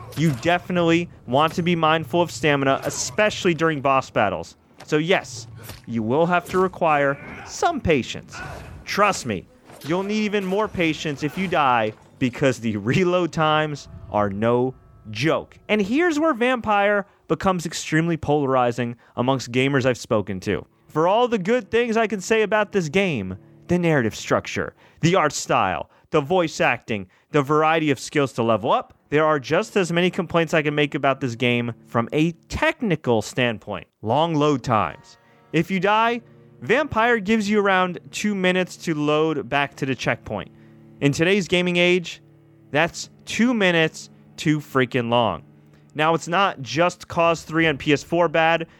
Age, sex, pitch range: 30-49, male, 130-180 Hz